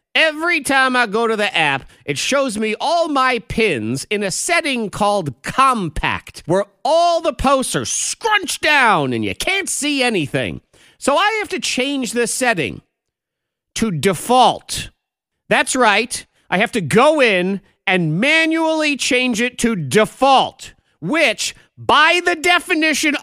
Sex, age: male, 40-59